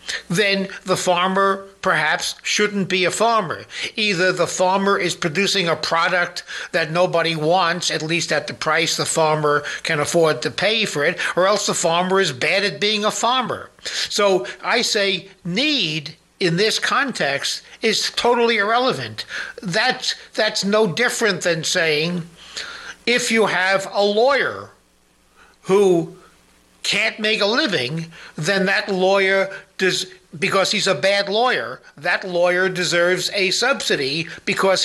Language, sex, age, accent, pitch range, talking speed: English, male, 60-79, American, 165-200 Hz, 140 wpm